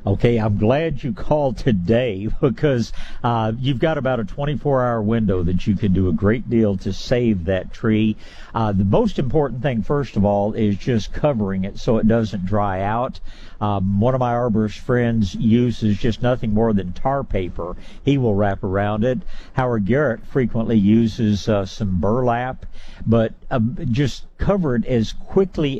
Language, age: English, 60-79